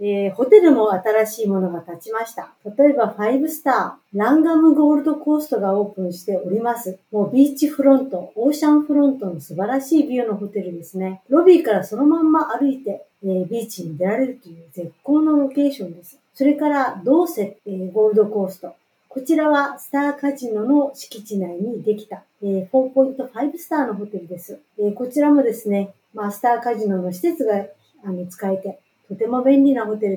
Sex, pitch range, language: female, 195-275 Hz, Japanese